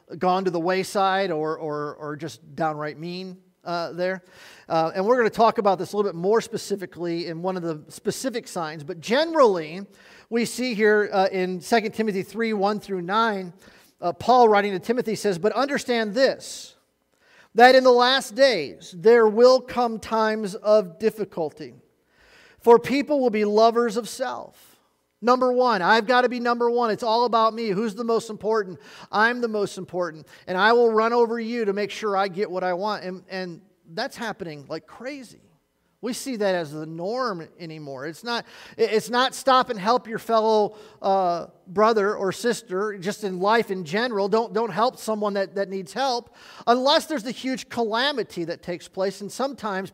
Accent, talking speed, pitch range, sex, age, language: American, 185 wpm, 185-235 Hz, male, 40-59, English